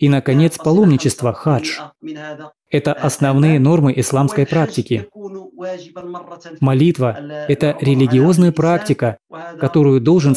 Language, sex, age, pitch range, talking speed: Russian, male, 20-39, 135-170 Hz, 85 wpm